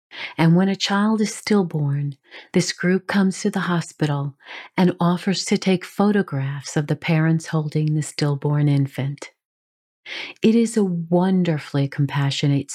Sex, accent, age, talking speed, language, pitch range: female, American, 40-59, 135 wpm, English, 145-205 Hz